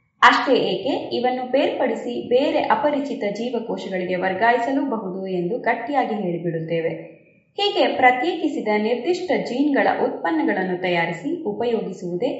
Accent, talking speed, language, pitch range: native, 85 wpm, Kannada, 185-265 Hz